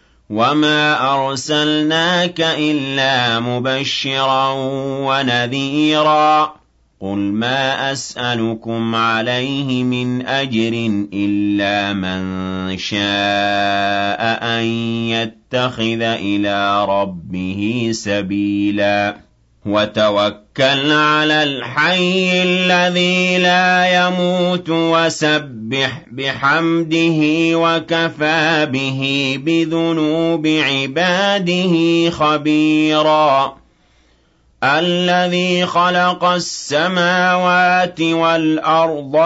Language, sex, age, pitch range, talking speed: Arabic, male, 40-59, 115-165 Hz, 55 wpm